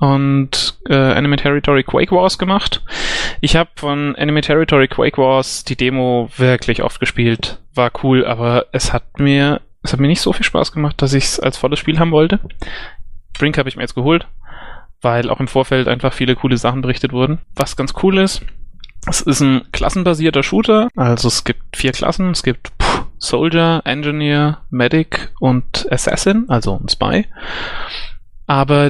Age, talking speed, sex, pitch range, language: 30-49, 170 wpm, male, 120-150 Hz, German